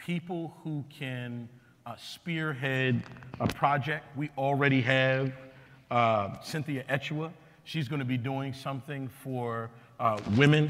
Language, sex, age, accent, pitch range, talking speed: English, male, 40-59, American, 130-155 Hz, 125 wpm